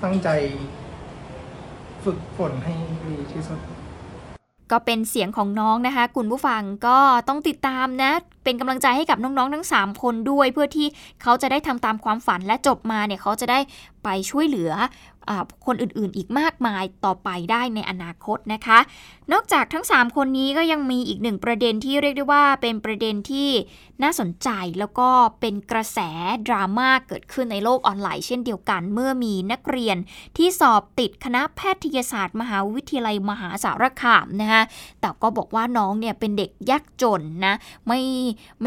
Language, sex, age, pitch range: Thai, female, 20-39, 210-270 Hz